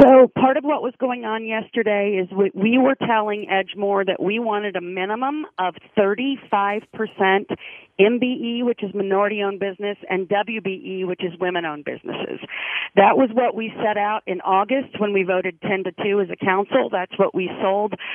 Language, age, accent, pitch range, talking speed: English, 40-59, American, 185-220 Hz, 170 wpm